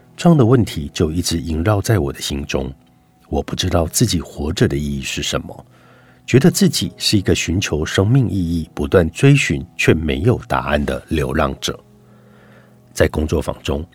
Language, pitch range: Chinese, 75-105 Hz